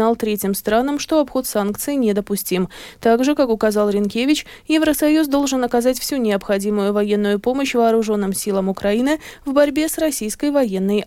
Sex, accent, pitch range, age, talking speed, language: female, native, 220-285 Hz, 20-39, 135 wpm, Russian